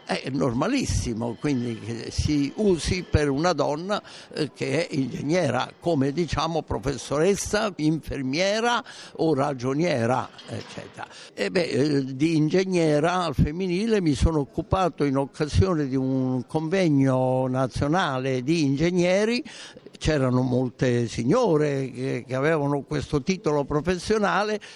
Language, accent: Italian, native